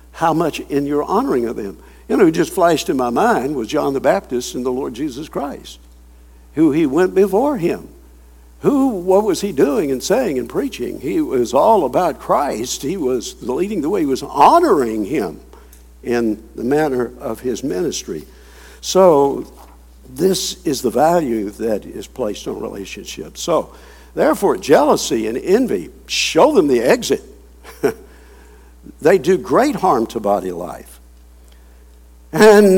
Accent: American